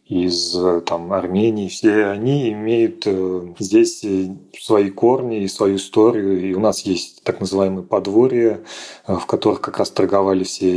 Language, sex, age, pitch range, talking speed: Russian, male, 30-49, 95-115 Hz, 135 wpm